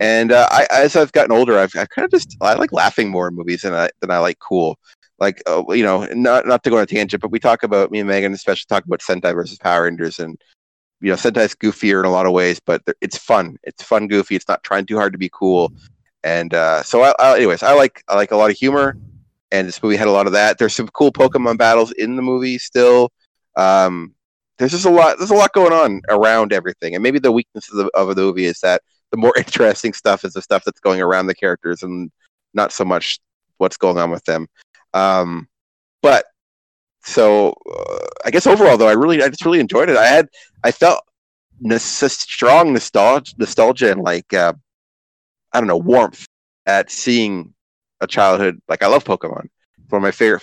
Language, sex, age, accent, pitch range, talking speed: English, male, 30-49, American, 90-115 Hz, 220 wpm